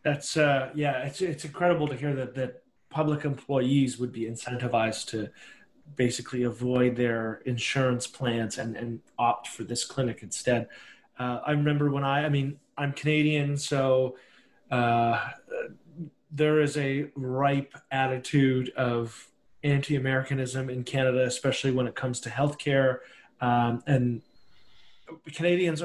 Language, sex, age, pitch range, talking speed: English, male, 30-49, 125-145 Hz, 130 wpm